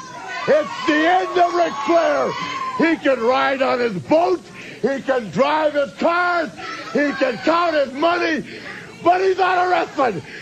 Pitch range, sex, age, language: 280-350 Hz, male, 50-69, English